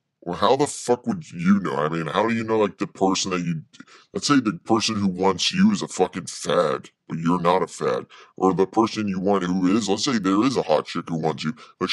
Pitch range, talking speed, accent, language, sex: 95-125 Hz, 260 wpm, American, English, female